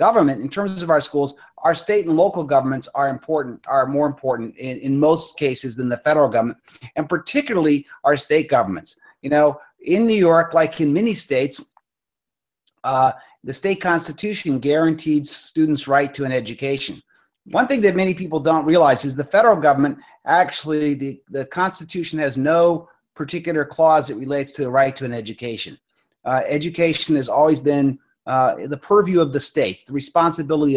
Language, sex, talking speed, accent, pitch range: English, male, 170 wpm, American, 135-165 Hz